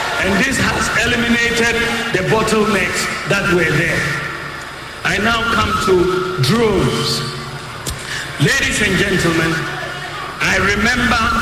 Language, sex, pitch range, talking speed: English, male, 170-220 Hz, 100 wpm